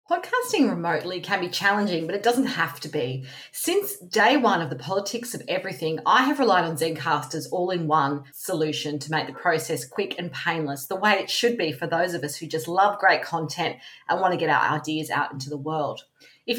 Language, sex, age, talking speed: English, female, 40-59, 210 wpm